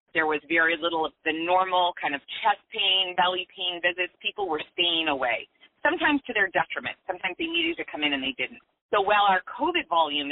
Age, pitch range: 30-49, 165-260 Hz